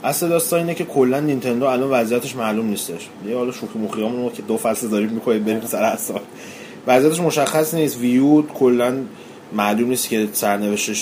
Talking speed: 170 wpm